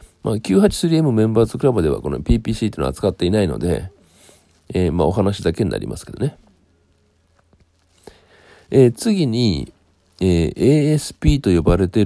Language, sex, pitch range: Japanese, male, 90-120 Hz